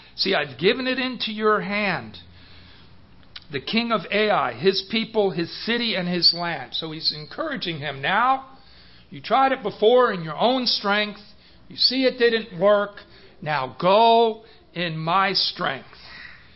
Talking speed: 150 wpm